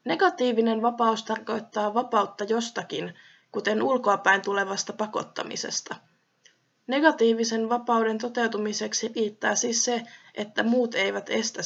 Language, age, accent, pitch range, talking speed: Finnish, 20-39, native, 210-250 Hz, 100 wpm